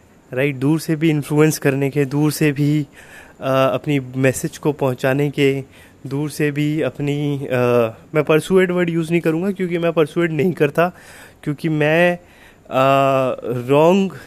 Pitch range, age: 130-165 Hz, 20-39